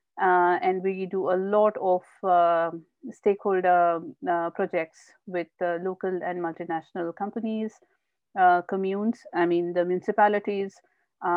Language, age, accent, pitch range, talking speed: English, 50-69, Indian, 175-255 Hz, 120 wpm